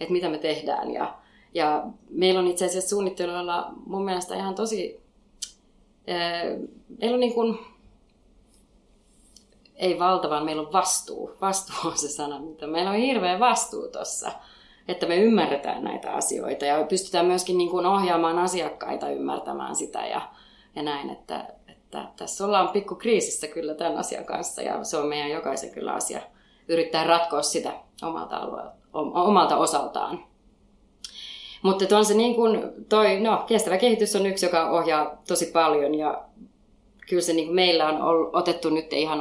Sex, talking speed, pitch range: female, 140 wpm, 155-200 Hz